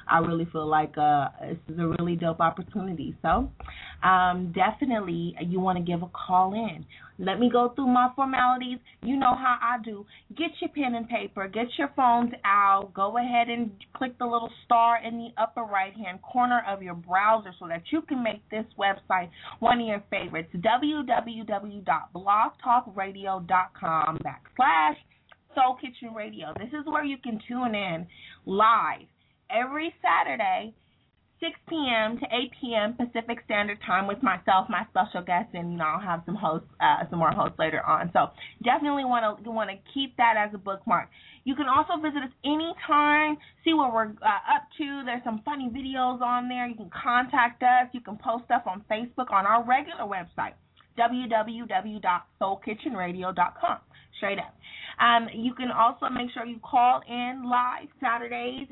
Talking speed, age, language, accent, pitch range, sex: 170 wpm, 20-39, English, American, 195-260 Hz, female